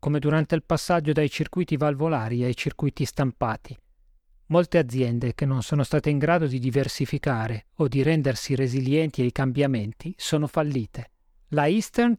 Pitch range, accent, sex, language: 130-160 Hz, native, male, Italian